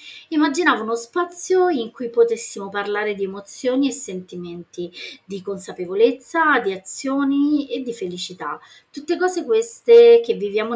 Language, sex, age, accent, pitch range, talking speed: Italian, female, 30-49, native, 185-250 Hz, 130 wpm